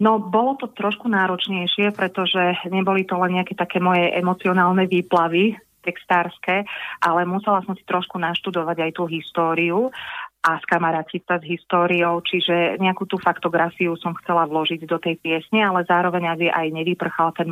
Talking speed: 150 wpm